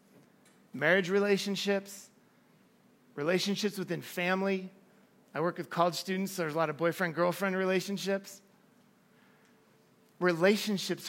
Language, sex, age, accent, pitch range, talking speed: English, male, 30-49, American, 165-205 Hz, 90 wpm